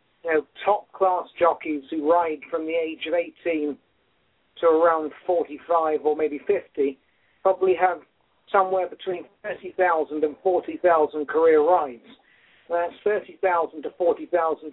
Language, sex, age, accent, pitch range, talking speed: English, male, 50-69, British, 160-210 Hz, 125 wpm